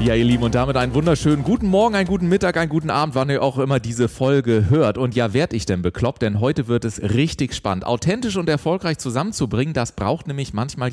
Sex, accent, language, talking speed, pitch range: male, German, German, 230 wpm, 110-145 Hz